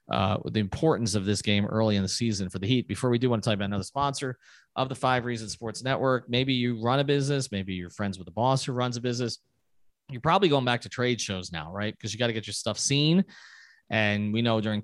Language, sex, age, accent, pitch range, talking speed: English, male, 30-49, American, 105-130 Hz, 260 wpm